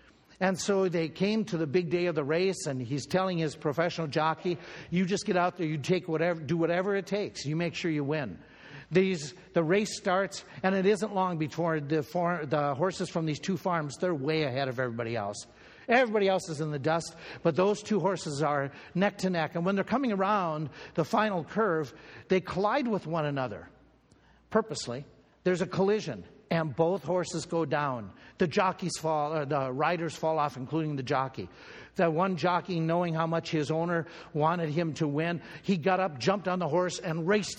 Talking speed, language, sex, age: 200 wpm, English, male, 60-79